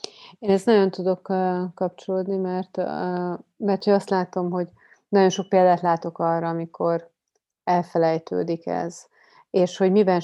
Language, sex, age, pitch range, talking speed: Hungarian, female, 30-49, 165-185 Hz, 135 wpm